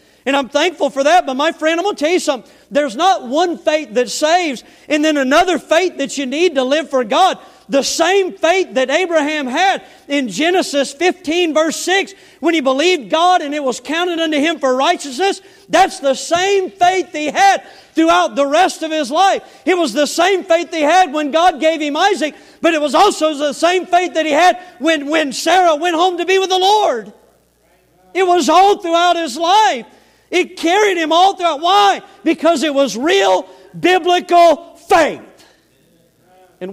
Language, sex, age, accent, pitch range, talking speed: English, male, 40-59, American, 275-345 Hz, 190 wpm